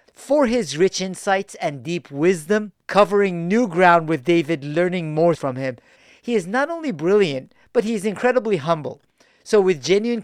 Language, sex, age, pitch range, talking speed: English, male, 50-69, 140-190 Hz, 170 wpm